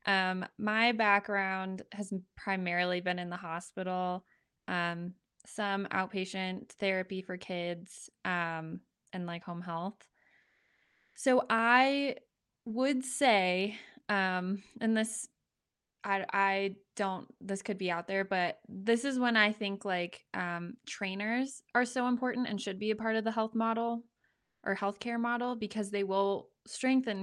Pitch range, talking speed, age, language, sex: 185-220 Hz, 140 wpm, 20-39, English, female